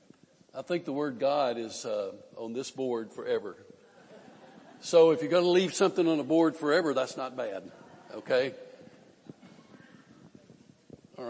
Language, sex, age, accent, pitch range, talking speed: English, male, 60-79, American, 135-195 Hz, 145 wpm